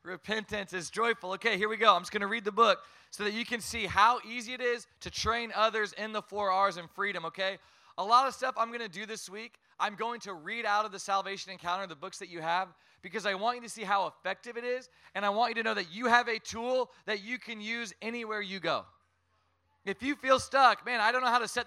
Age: 20-39